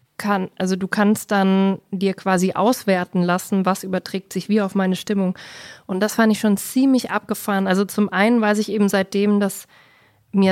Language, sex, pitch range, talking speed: German, female, 175-205 Hz, 185 wpm